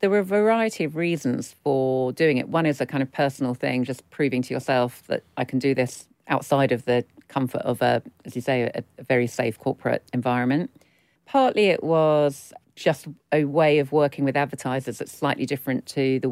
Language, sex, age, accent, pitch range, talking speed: English, female, 40-59, British, 125-140 Hz, 200 wpm